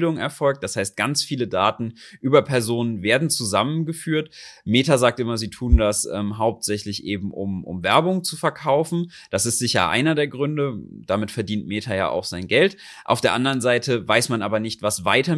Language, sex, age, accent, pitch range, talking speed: German, male, 30-49, German, 100-140 Hz, 185 wpm